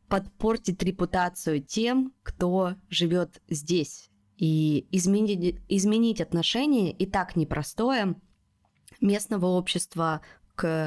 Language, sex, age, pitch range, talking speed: Russian, female, 20-39, 150-190 Hz, 90 wpm